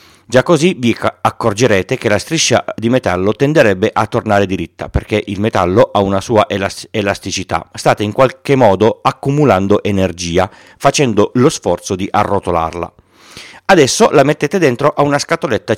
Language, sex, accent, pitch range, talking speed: Italian, male, native, 95-130 Hz, 145 wpm